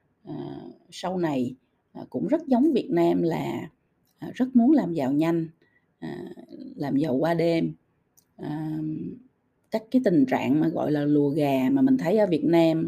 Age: 20-39